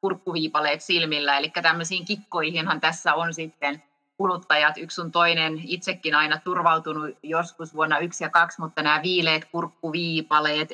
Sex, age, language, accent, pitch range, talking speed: female, 30-49, Finnish, native, 150-180 Hz, 135 wpm